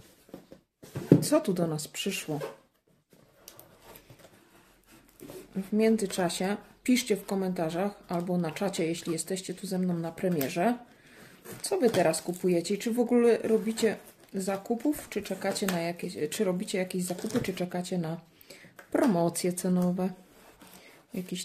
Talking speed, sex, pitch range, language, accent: 125 wpm, female, 180-220 Hz, Polish, native